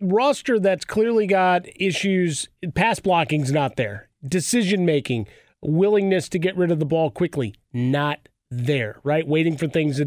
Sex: male